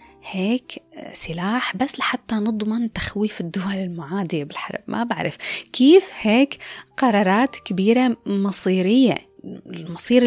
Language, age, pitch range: Arabic, 20-39, 195-265 Hz